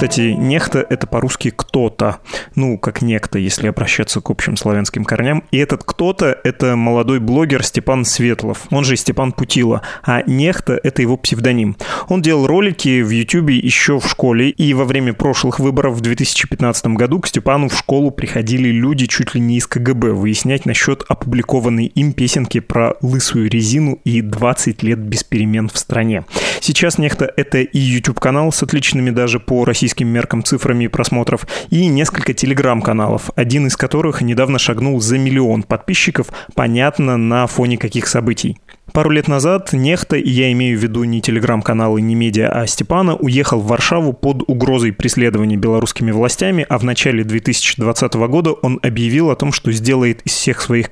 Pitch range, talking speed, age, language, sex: 115-140 Hz, 170 wpm, 20-39, Russian, male